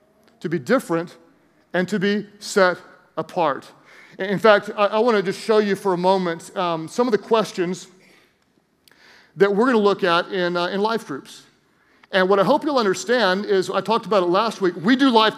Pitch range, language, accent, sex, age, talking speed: 195-225 Hz, English, American, male, 40-59, 200 wpm